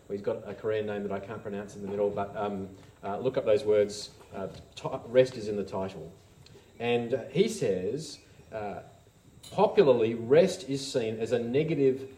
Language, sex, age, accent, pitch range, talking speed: English, male, 40-59, Australian, 115-155 Hz, 175 wpm